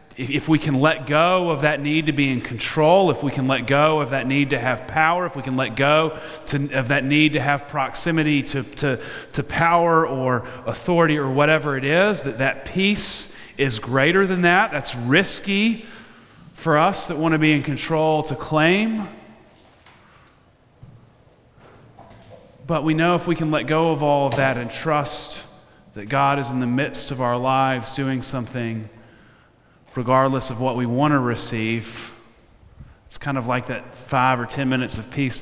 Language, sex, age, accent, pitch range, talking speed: English, male, 30-49, American, 125-155 Hz, 180 wpm